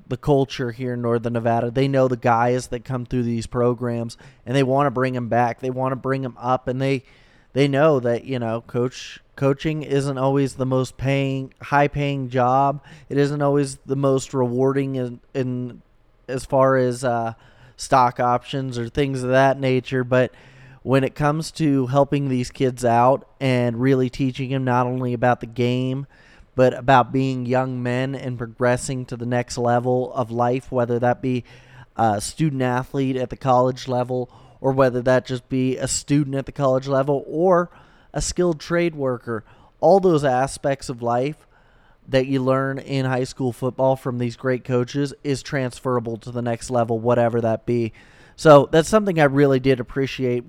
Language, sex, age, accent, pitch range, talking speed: English, male, 20-39, American, 120-135 Hz, 180 wpm